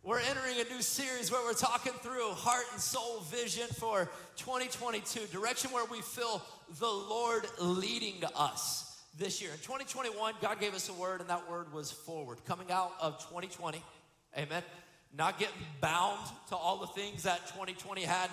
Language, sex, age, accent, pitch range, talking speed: English, male, 40-59, American, 180-240 Hz, 170 wpm